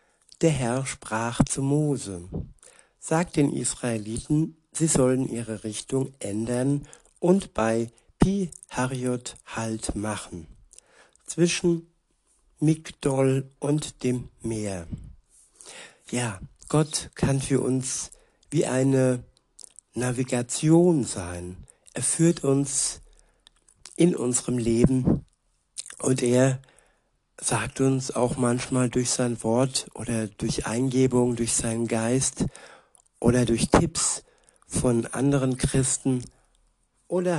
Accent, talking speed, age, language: German, 95 wpm, 60-79, German